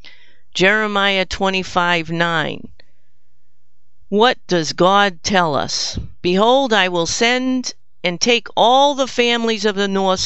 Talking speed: 115 wpm